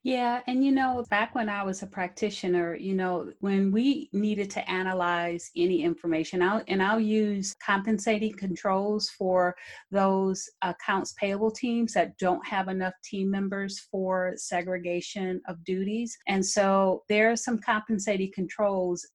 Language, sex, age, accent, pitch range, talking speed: English, female, 40-59, American, 180-205 Hz, 145 wpm